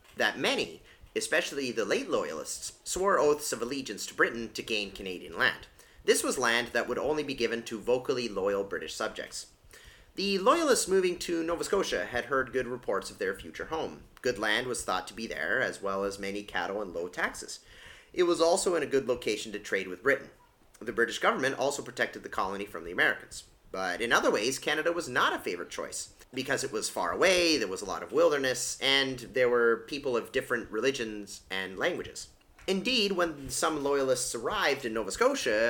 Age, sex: 30-49, male